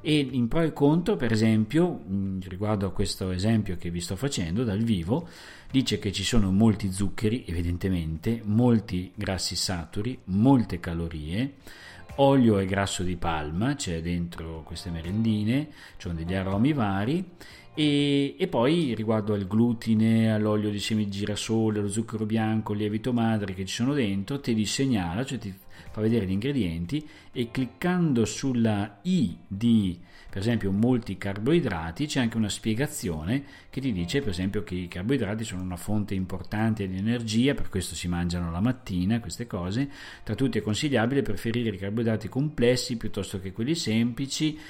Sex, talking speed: male, 160 wpm